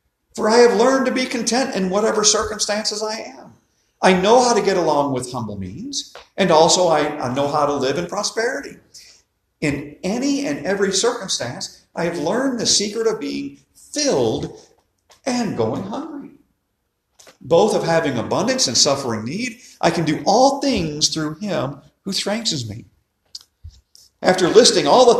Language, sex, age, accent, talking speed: English, male, 50-69, American, 160 wpm